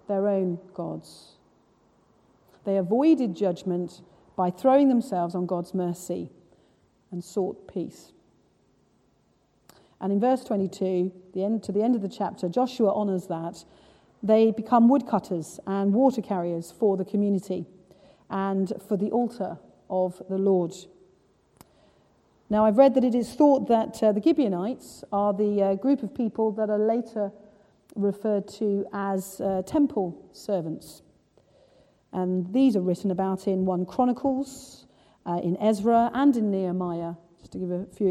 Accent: British